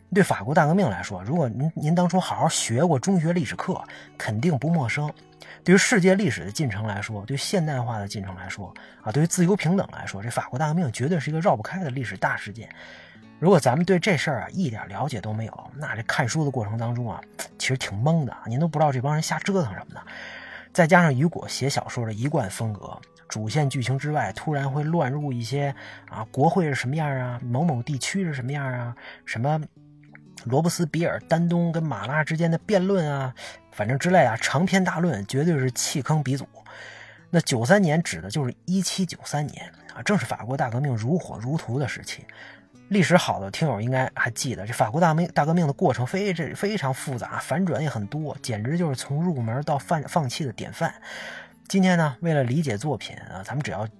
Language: Chinese